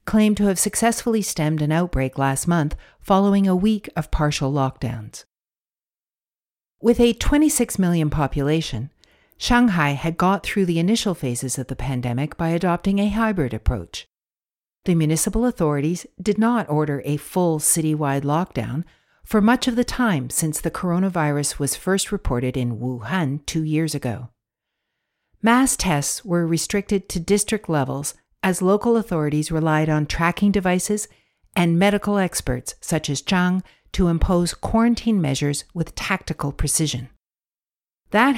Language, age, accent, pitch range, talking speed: English, 60-79, American, 145-200 Hz, 140 wpm